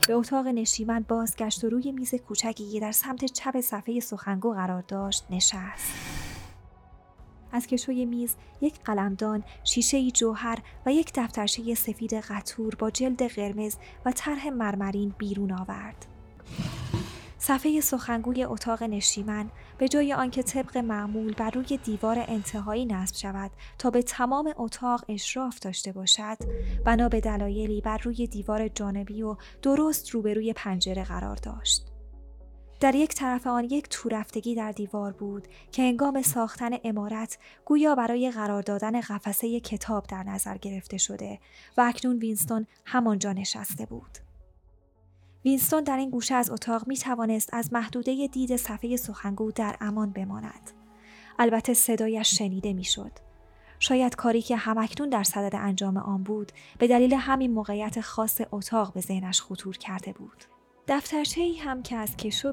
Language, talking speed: Persian, 140 wpm